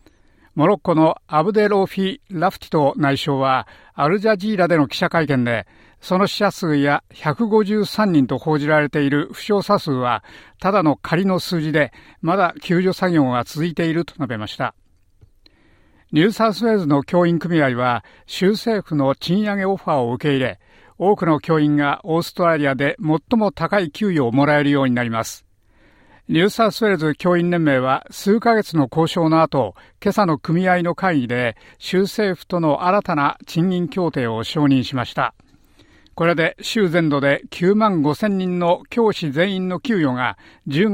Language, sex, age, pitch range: Japanese, male, 50-69, 140-190 Hz